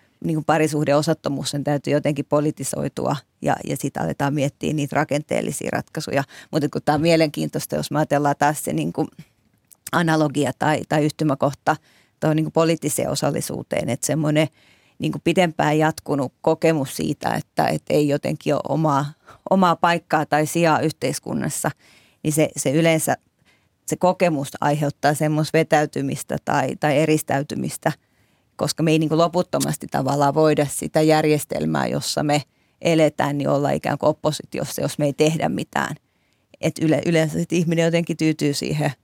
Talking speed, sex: 140 wpm, female